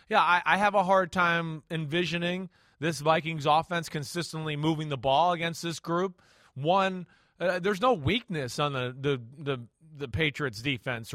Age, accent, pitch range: 30-49, American, 155-210 Hz